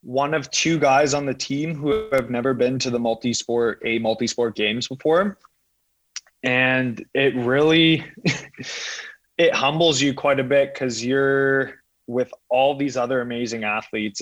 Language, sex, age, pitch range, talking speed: English, male, 20-39, 110-140 Hz, 150 wpm